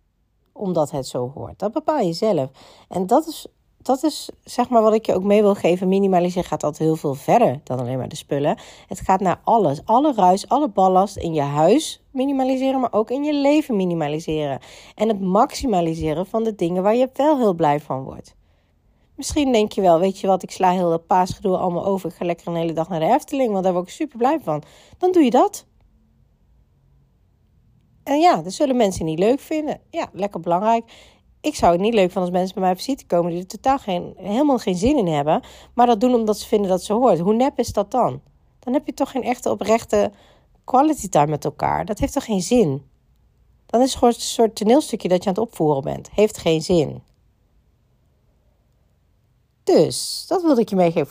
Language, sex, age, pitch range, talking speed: Dutch, female, 40-59, 170-245 Hz, 215 wpm